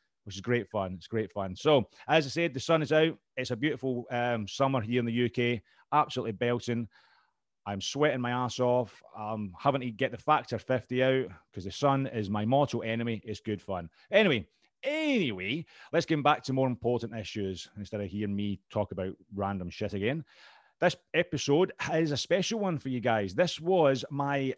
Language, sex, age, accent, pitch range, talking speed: English, male, 30-49, British, 115-150 Hz, 195 wpm